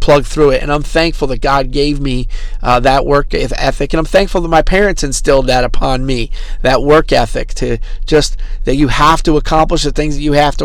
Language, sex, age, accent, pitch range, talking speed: English, male, 40-59, American, 135-160 Hz, 225 wpm